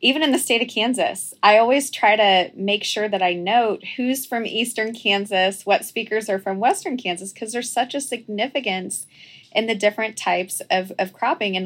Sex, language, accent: female, English, American